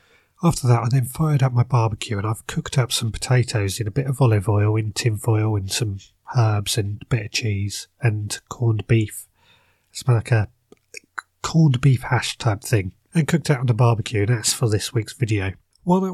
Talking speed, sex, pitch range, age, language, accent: 205 wpm, male, 110-140 Hz, 30-49, English, British